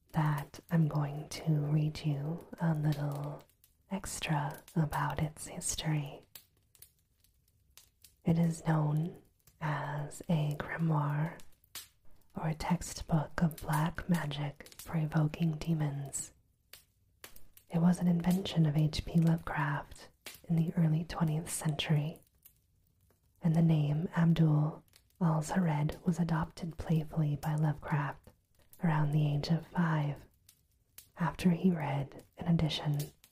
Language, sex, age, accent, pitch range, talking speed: English, female, 30-49, American, 125-165 Hz, 105 wpm